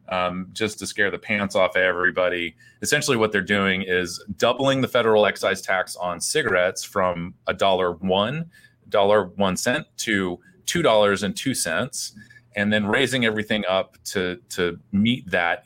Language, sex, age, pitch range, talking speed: English, male, 30-49, 90-110 Hz, 165 wpm